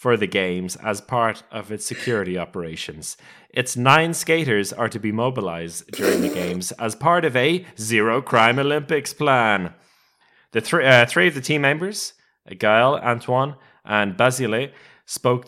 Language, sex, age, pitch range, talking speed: English, male, 30-49, 100-135 Hz, 155 wpm